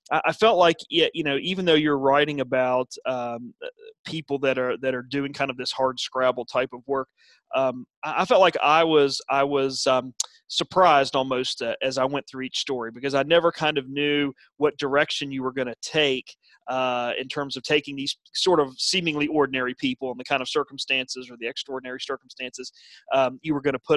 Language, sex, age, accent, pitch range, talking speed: English, male, 30-49, American, 130-150 Hz, 205 wpm